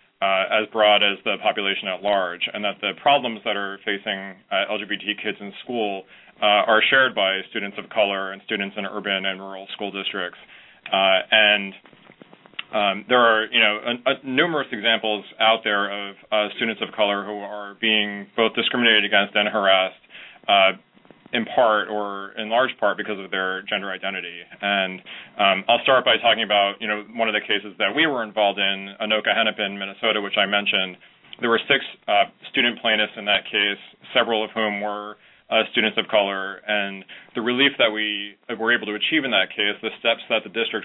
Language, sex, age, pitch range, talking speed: English, male, 30-49, 100-110 Hz, 185 wpm